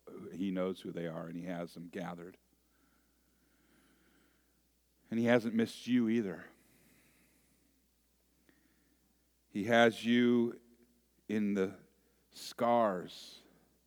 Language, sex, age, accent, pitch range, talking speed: English, male, 50-69, American, 85-120 Hz, 95 wpm